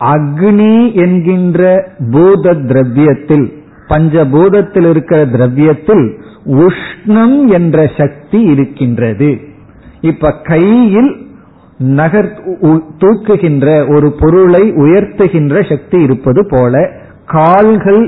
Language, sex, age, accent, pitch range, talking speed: Tamil, male, 50-69, native, 140-190 Hz, 65 wpm